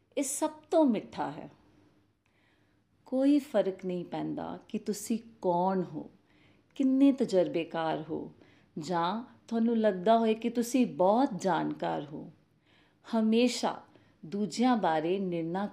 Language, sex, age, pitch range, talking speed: Punjabi, female, 40-59, 170-255 Hz, 105 wpm